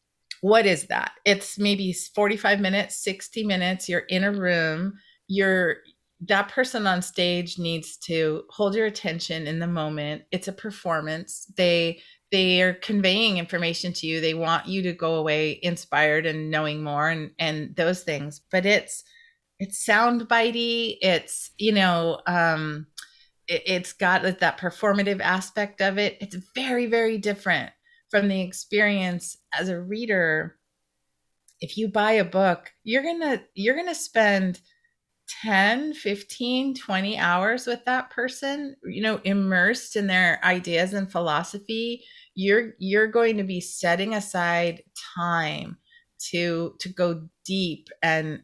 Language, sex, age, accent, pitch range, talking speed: English, female, 30-49, American, 170-210 Hz, 145 wpm